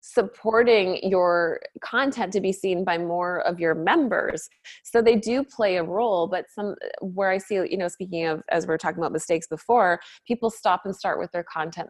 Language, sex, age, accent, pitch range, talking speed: English, female, 20-39, American, 160-190 Hz, 195 wpm